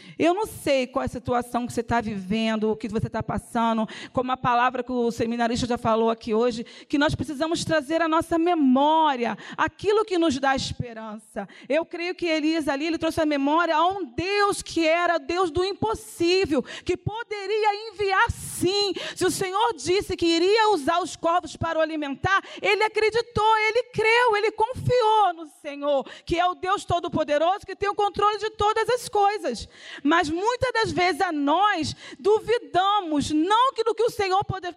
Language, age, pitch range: Portuguese, 40-59, 275-375 Hz